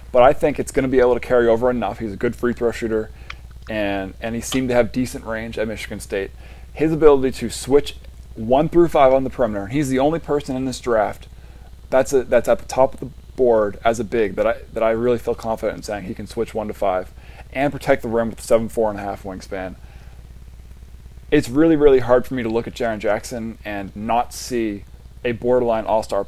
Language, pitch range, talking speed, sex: English, 105-135 Hz, 230 wpm, male